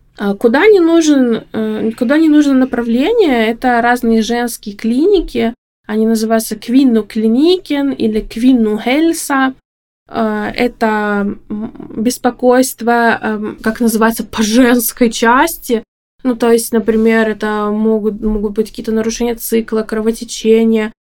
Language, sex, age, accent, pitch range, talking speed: Russian, female, 20-39, native, 220-245 Hz, 100 wpm